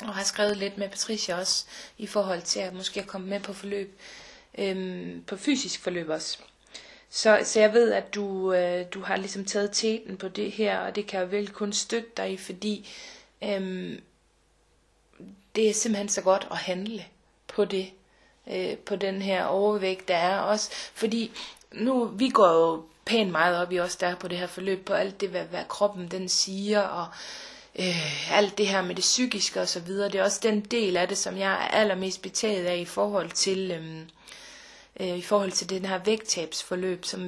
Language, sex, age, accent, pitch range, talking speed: Danish, female, 30-49, native, 185-210 Hz, 200 wpm